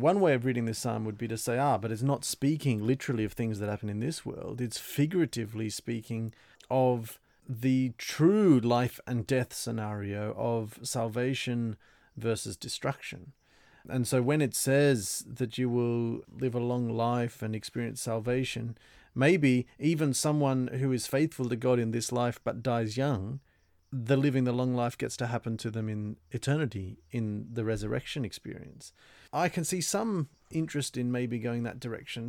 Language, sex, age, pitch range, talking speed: English, male, 40-59, 115-140 Hz, 170 wpm